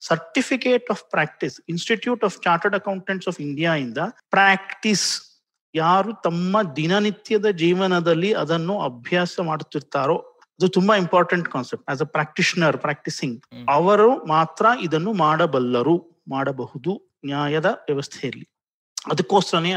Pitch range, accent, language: 150-205 Hz, native, Kannada